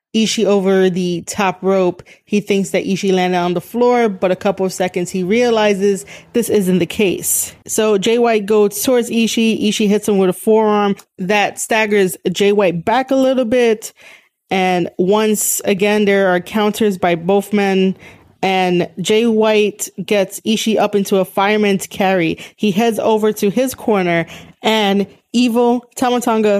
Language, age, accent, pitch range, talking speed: English, 20-39, American, 190-225 Hz, 160 wpm